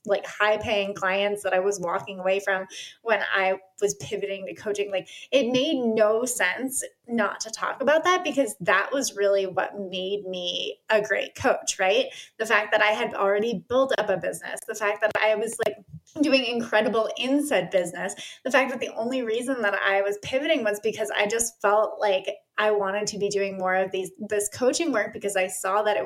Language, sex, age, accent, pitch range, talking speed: English, female, 20-39, American, 195-235 Hz, 205 wpm